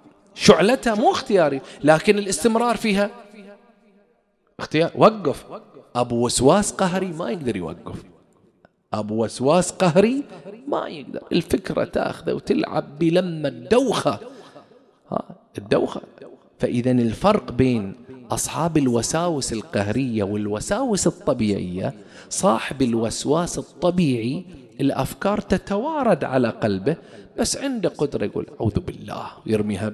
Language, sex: English, male